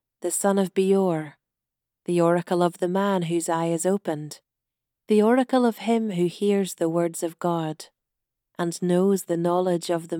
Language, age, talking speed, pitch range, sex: English, 40-59, 170 wpm, 165-200 Hz, female